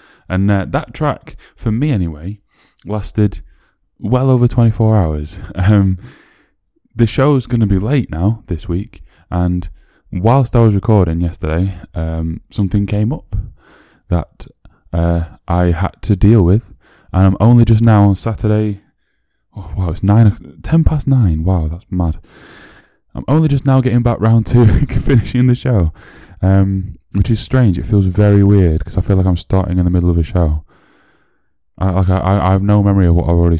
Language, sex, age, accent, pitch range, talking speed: English, male, 10-29, British, 85-105 Hz, 175 wpm